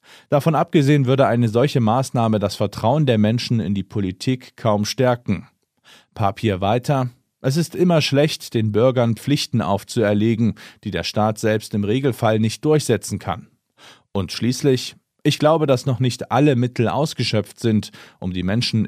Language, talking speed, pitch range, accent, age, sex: German, 155 wpm, 105-135 Hz, German, 40-59, male